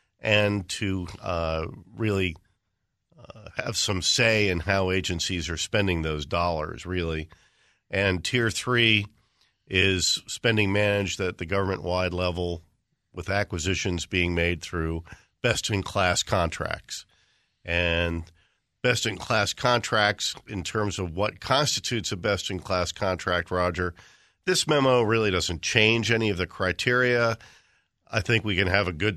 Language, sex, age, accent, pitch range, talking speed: English, male, 50-69, American, 90-105 Hz, 125 wpm